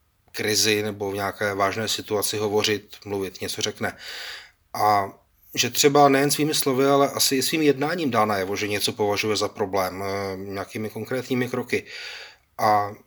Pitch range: 110-125 Hz